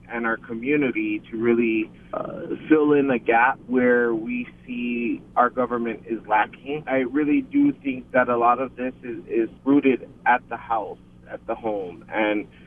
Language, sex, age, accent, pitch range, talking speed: English, male, 20-39, American, 110-135 Hz, 170 wpm